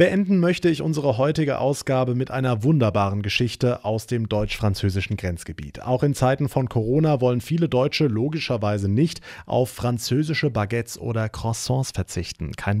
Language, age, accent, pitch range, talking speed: German, 30-49, German, 105-150 Hz, 145 wpm